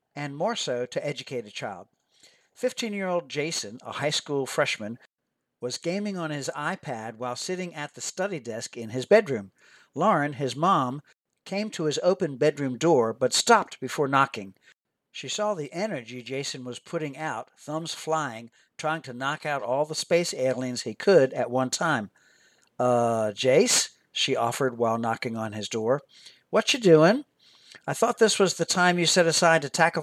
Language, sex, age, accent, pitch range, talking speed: English, male, 60-79, American, 125-170 Hz, 170 wpm